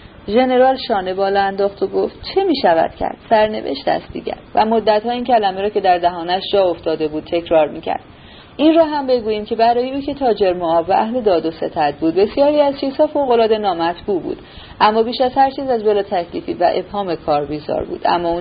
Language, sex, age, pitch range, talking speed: Persian, female, 30-49, 175-250 Hz, 205 wpm